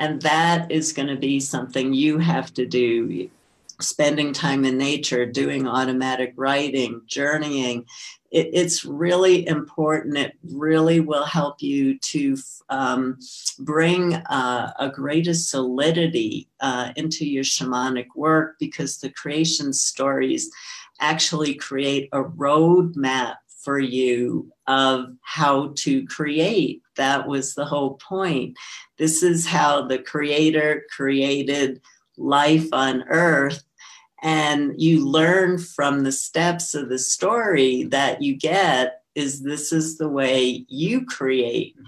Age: 50-69